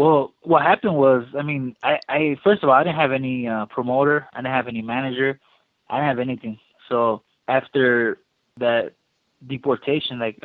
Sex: male